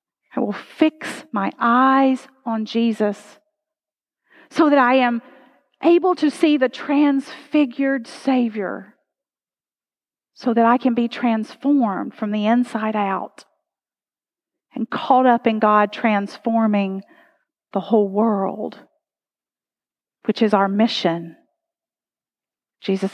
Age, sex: 40-59, female